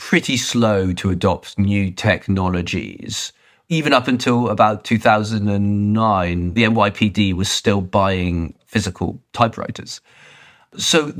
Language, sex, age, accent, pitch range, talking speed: English, male, 30-49, British, 100-115 Hz, 100 wpm